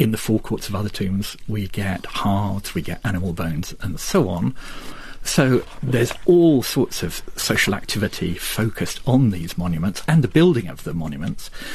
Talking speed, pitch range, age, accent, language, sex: 170 wpm, 100-130 Hz, 50-69, British, English, male